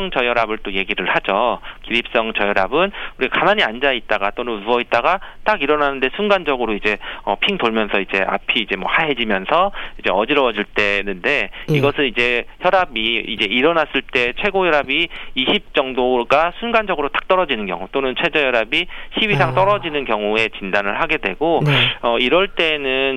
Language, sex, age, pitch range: Korean, male, 40-59, 110-155 Hz